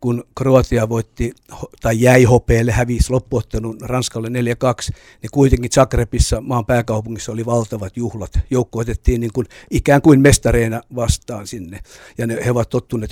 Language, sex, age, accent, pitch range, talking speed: Finnish, male, 60-79, native, 115-130 Hz, 135 wpm